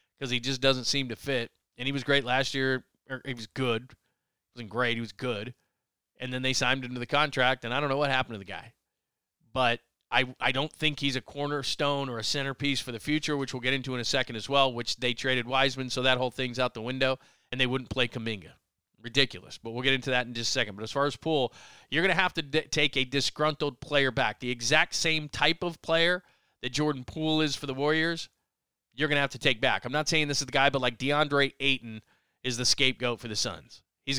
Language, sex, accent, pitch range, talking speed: English, male, American, 125-145 Hz, 250 wpm